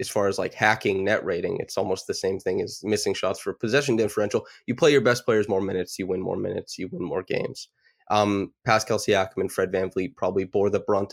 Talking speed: 235 wpm